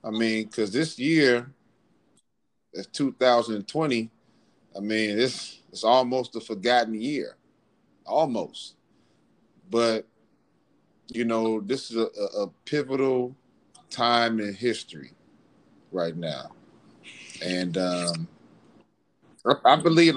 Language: English